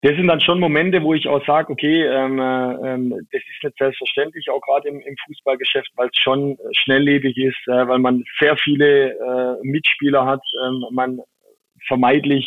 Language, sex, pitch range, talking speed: German, male, 120-135 Hz, 180 wpm